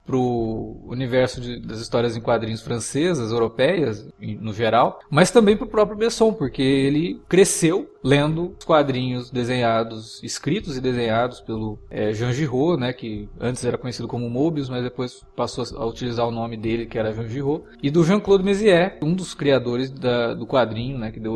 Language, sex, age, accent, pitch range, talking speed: Portuguese, male, 20-39, Brazilian, 115-150 Hz, 170 wpm